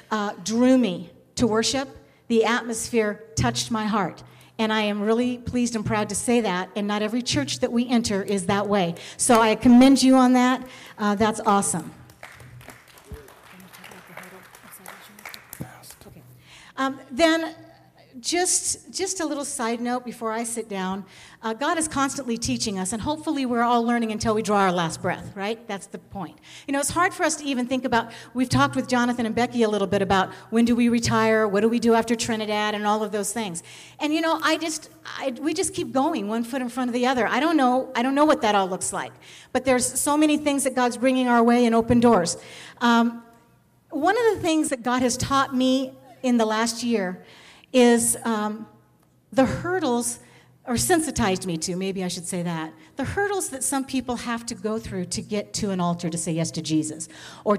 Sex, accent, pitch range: female, American, 210-270 Hz